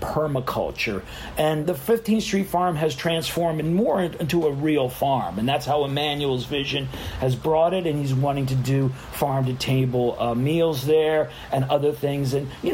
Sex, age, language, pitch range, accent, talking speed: male, 40-59, English, 130-165 Hz, American, 175 wpm